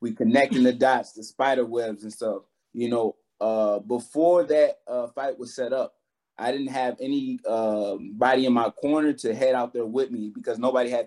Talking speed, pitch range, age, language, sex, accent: 200 wpm, 115-145 Hz, 20-39, Hebrew, male, American